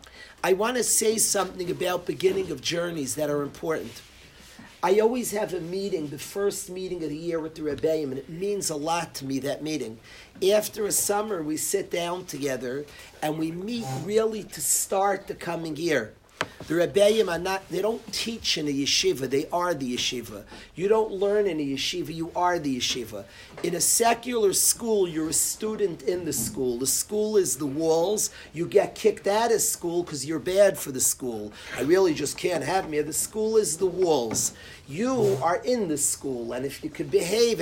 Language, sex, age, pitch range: English, male, 40-59, 150-210 Hz